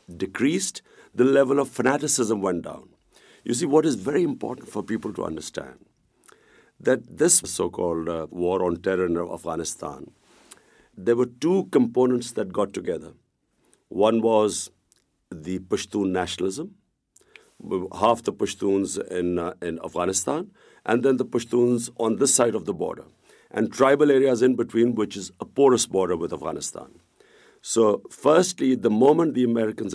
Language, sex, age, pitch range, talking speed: English, male, 50-69, 100-130 Hz, 145 wpm